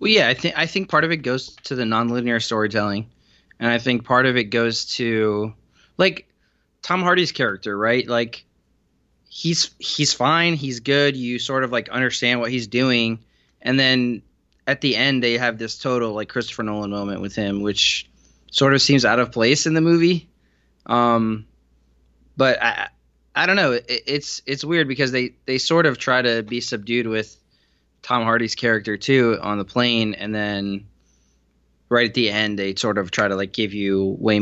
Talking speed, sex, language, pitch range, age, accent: 190 wpm, male, English, 100-125 Hz, 20-39, American